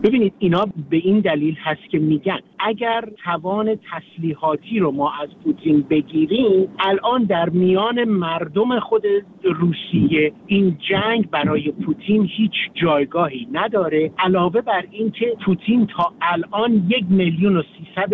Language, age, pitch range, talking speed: Persian, 50-69, 165-215 Hz, 130 wpm